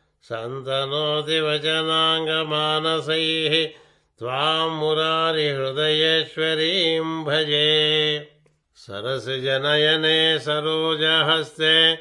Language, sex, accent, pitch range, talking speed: Telugu, male, native, 150-160 Hz, 65 wpm